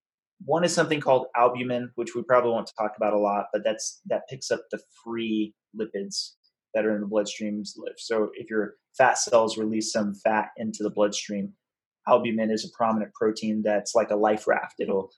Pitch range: 110-130 Hz